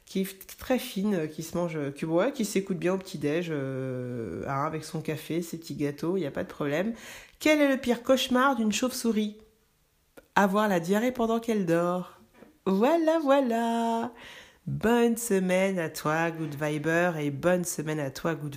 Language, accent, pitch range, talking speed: French, French, 165-210 Hz, 175 wpm